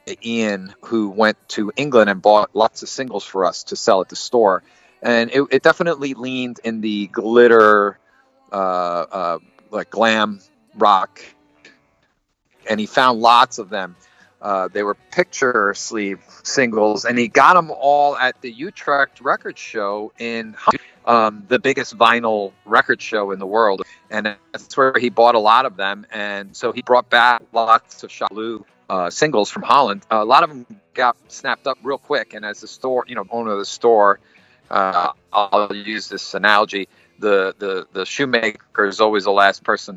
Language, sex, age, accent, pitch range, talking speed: English, male, 40-59, American, 100-120 Hz, 175 wpm